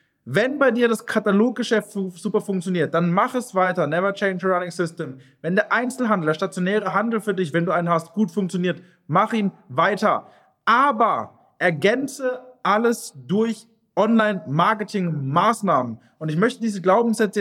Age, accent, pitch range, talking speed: 20-39, German, 175-220 Hz, 150 wpm